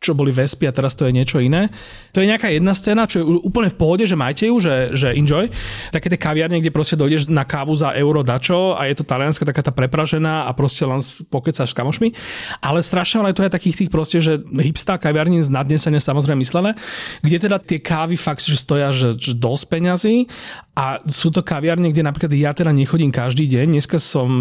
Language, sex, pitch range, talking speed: Slovak, male, 140-175 Hz, 210 wpm